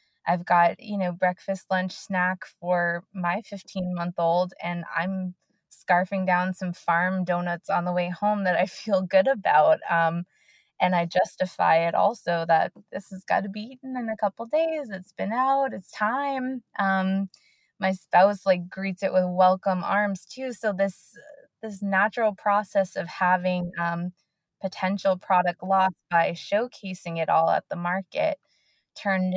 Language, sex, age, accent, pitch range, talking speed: English, female, 20-39, American, 170-195 Hz, 160 wpm